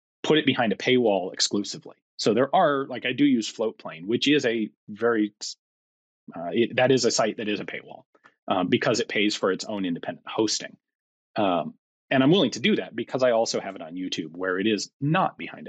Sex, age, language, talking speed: male, 30-49, English, 205 wpm